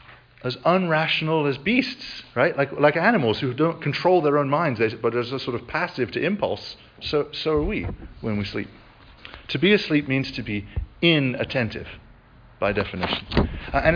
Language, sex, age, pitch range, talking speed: English, male, 40-59, 110-160 Hz, 170 wpm